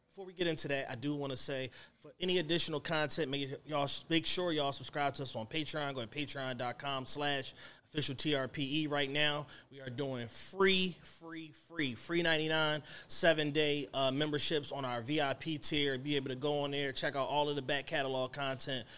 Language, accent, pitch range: English, American, 130-155 Hz